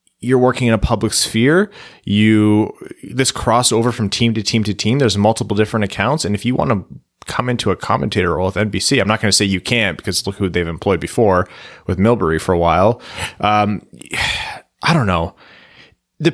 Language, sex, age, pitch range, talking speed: English, male, 30-49, 105-140 Hz, 200 wpm